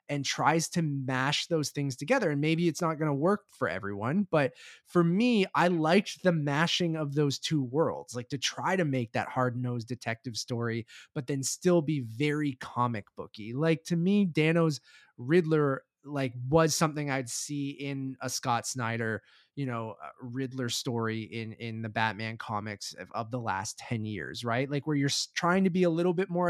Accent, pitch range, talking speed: American, 135-180 Hz, 190 wpm